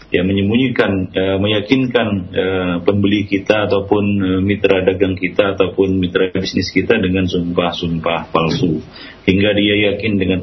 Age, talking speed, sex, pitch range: 40-59, 125 wpm, male, 95-105 Hz